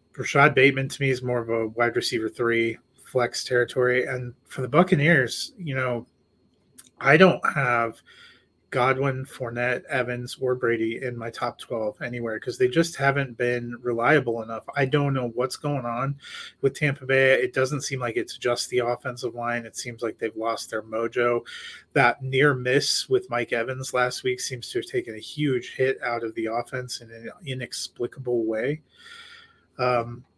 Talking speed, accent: 175 wpm, American